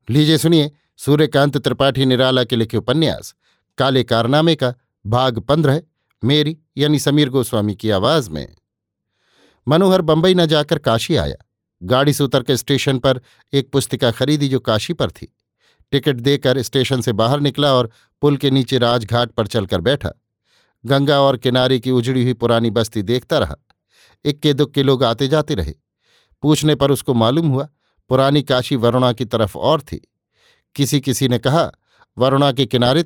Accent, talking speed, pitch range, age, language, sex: native, 160 wpm, 120-145 Hz, 50-69, Hindi, male